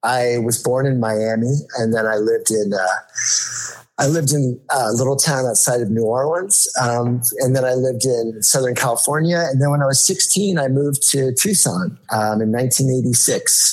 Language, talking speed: English, 185 wpm